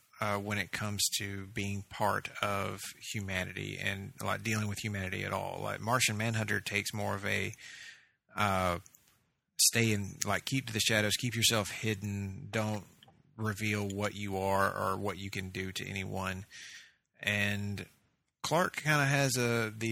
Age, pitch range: 30-49, 100-115 Hz